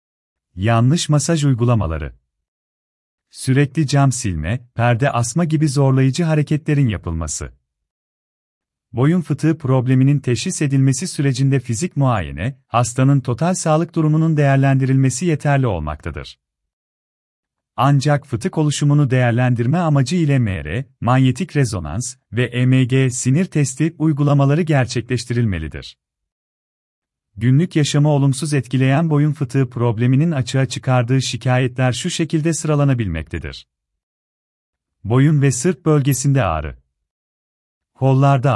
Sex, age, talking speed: male, 40-59, 95 wpm